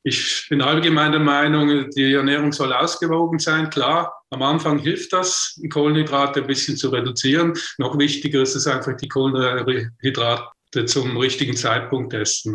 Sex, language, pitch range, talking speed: male, German, 130-155 Hz, 145 wpm